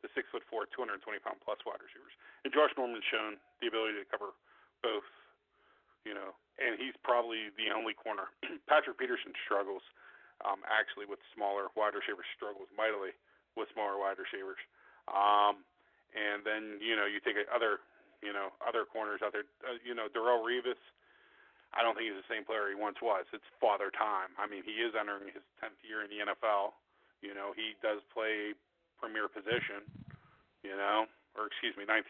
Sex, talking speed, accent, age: male, 180 wpm, American, 40-59